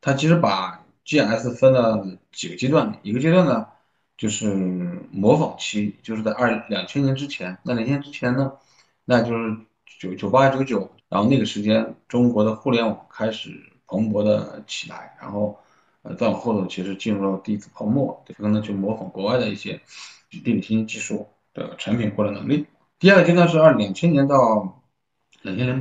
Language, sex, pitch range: Chinese, male, 100-130 Hz